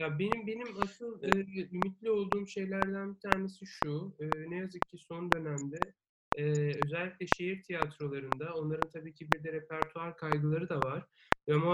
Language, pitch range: Turkish, 160-205 Hz